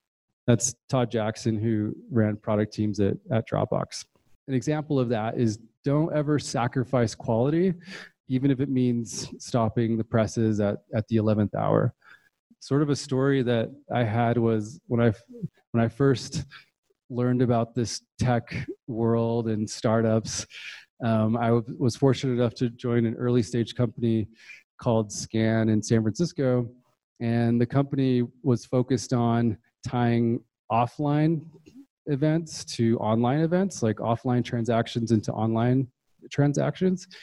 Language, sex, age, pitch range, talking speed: English, male, 30-49, 115-135 Hz, 135 wpm